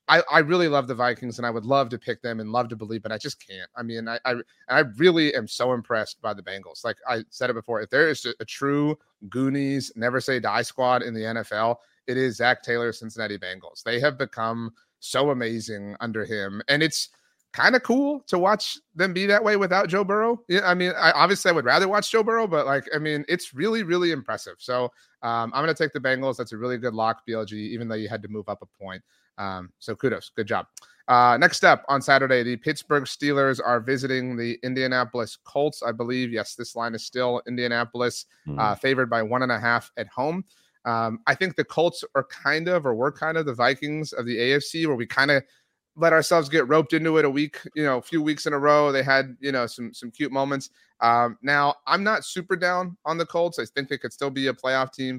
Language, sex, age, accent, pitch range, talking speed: English, male, 30-49, American, 120-160 Hz, 235 wpm